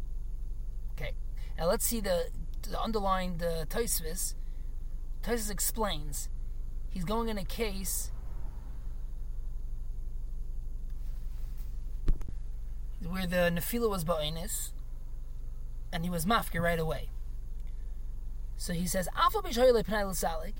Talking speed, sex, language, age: 85 wpm, male, English, 20-39